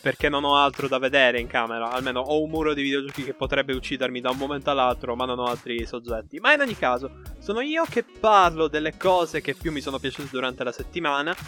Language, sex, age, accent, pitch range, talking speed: Italian, male, 20-39, native, 125-155 Hz, 230 wpm